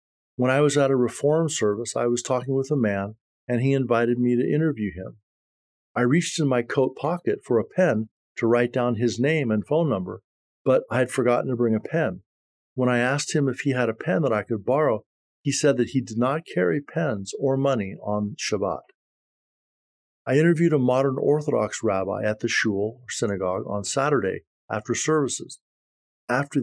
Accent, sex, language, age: American, male, English, 50-69